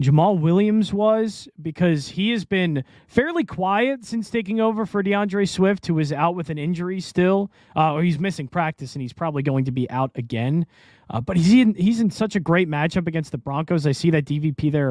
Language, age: English, 20-39